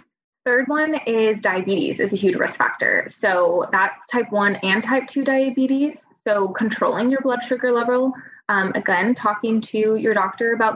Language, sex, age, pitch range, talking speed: English, female, 20-39, 200-255 Hz, 165 wpm